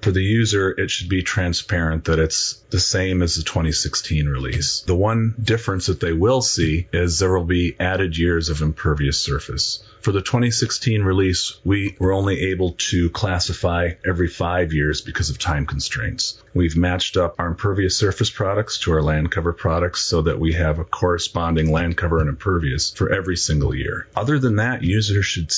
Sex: male